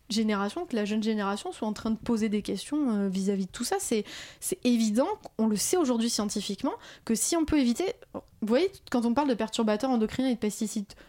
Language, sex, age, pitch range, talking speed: French, female, 20-39, 215-265 Hz, 220 wpm